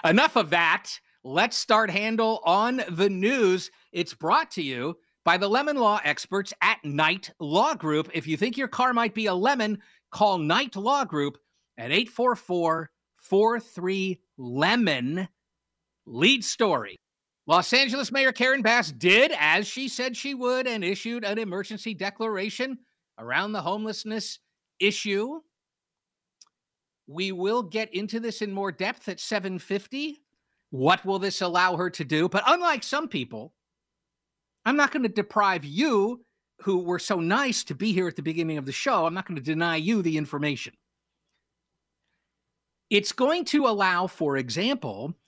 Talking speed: 150 wpm